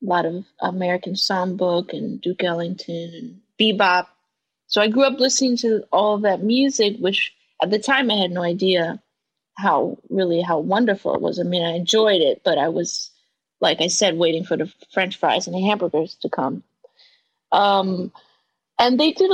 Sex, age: female, 30-49